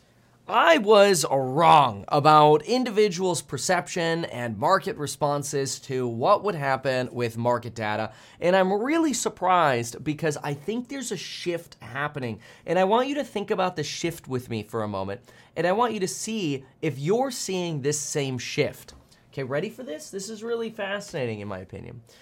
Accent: American